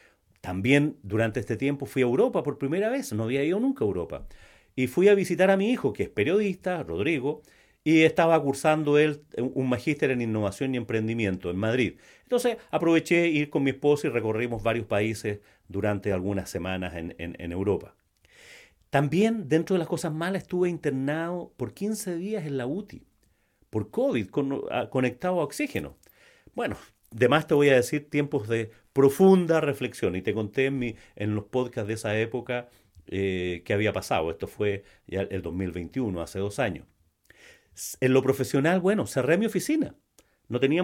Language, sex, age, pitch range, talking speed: Spanish, male, 40-59, 110-160 Hz, 175 wpm